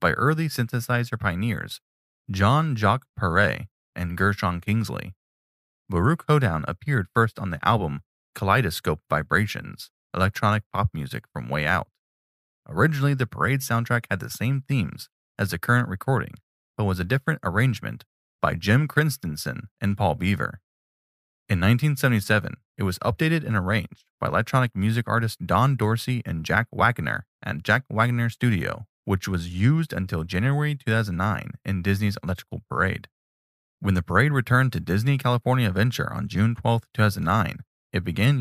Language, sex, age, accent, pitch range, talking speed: English, male, 20-39, American, 95-125 Hz, 145 wpm